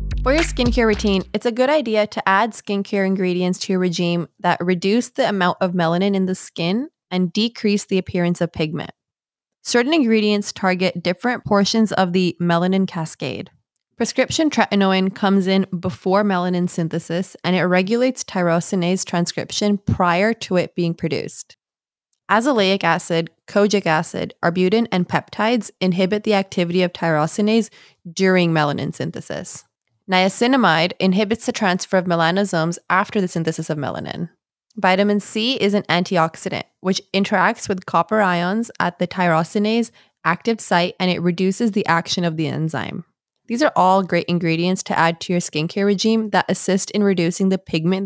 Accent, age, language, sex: American, 20-39, English, female